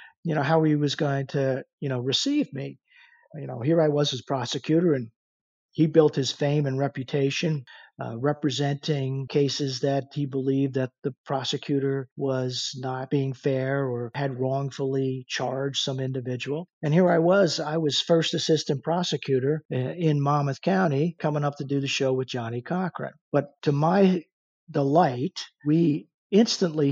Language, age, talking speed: English, 50-69, 160 wpm